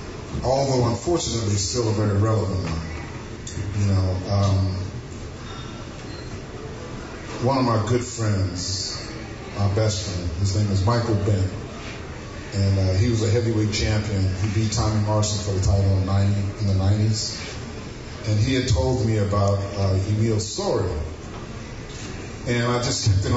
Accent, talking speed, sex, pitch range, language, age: American, 140 wpm, male, 100-110 Hz, English, 40-59